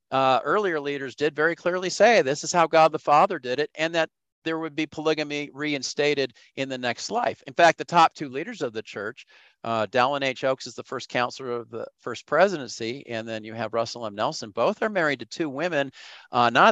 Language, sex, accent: English, male, American